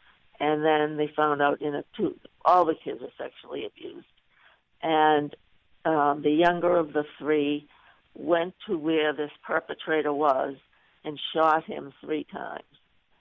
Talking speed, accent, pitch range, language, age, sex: 145 wpm, American, 145-165 Hz, English, 60-79, female